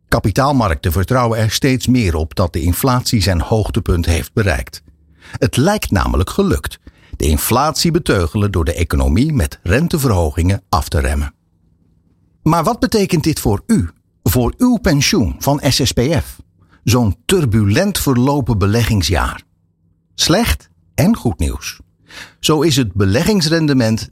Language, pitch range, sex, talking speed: Dutch, 85-125 Hz, male, 125 wpm